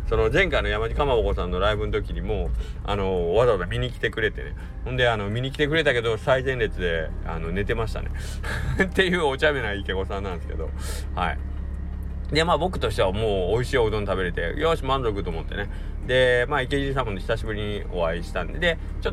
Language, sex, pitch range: Japanese, male, 80-130 Hz